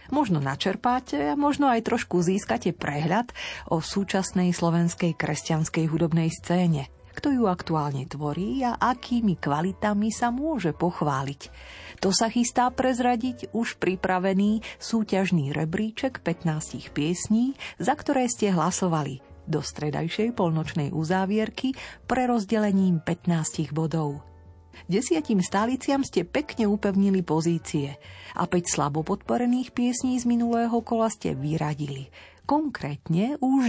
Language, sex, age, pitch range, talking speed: Slovak, female, 40-59, 160-225 Hz, 110 wpm